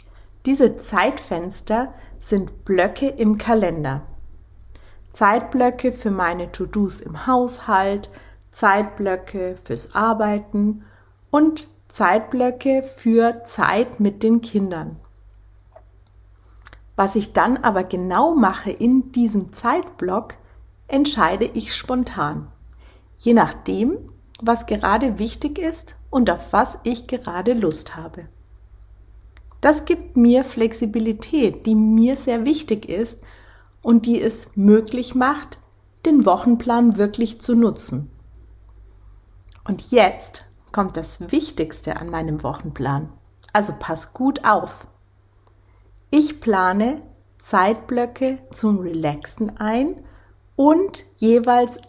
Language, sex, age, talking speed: German, female, 40-59, 100 wpm